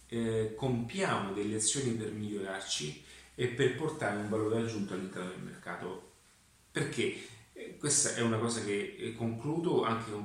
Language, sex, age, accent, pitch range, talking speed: Italian, male, 30-49, native, 105-125 Hz, 145 wpm